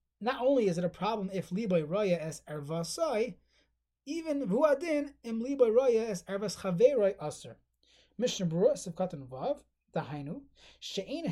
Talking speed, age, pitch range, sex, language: 145 wpm, 30-49, 160-215 Hz, male, English